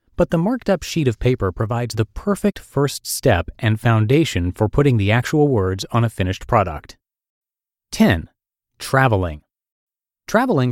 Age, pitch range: 30-49, 100-135 Hz